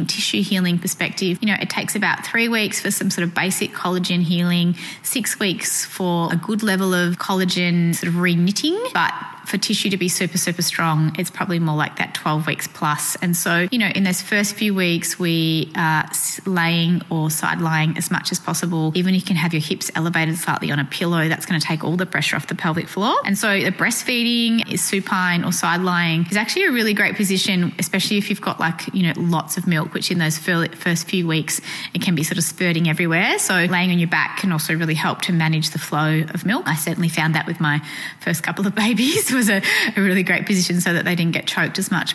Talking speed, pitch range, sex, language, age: 230 wpm, 165-200 Hz, female, English, 20-39